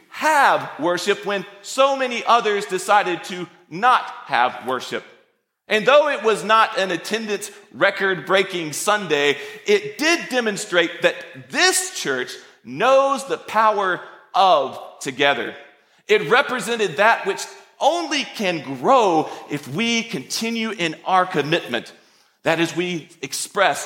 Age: 40-59